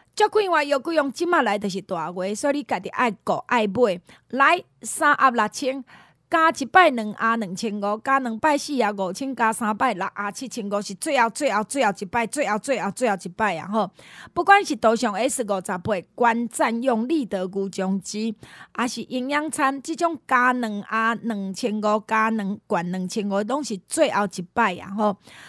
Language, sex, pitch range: Chinese, female, 210-275 Hz